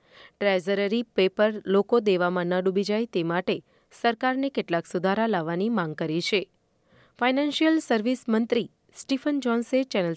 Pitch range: 180-230 Hz